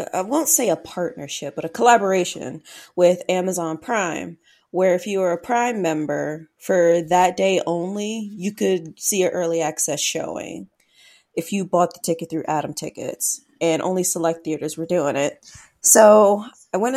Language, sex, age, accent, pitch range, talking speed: English, female, 20-39, American, 170-195 Hz, 165 wpm